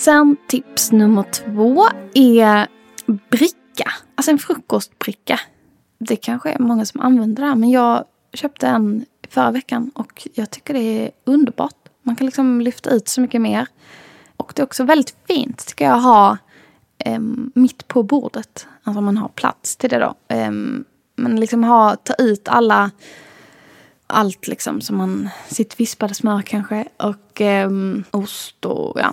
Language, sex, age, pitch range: English, female, 20-39, 210-255 Hz